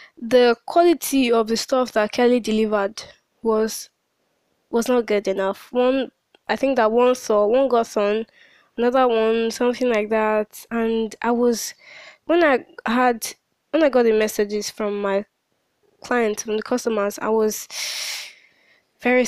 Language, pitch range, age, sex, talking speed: English, 215-250 Hz, 10-29, female, 145 wpm